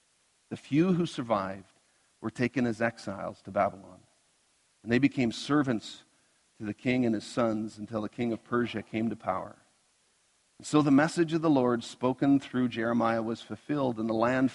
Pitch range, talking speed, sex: 115-135 Hz, 175 wpm, male